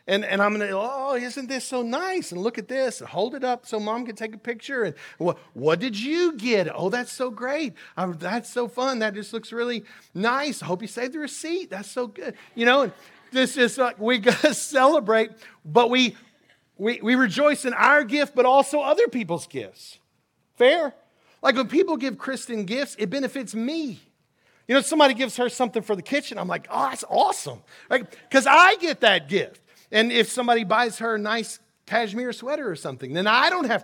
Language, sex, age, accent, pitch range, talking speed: English, male, 40-59, American, 205-260 Hz, 215 wpm